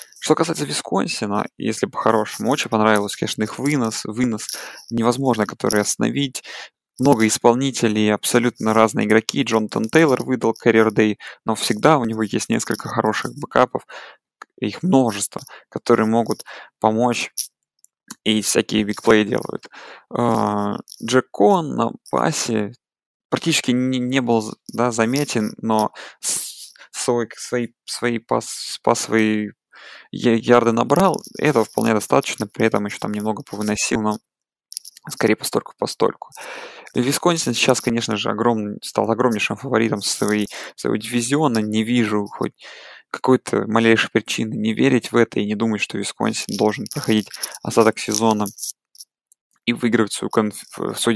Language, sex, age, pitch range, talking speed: Russian, male, 20-39, 105-120 Hz, 120 wpm